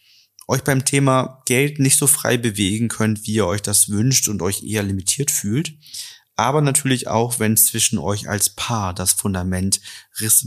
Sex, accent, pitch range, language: male, German, 105-130 Hz, German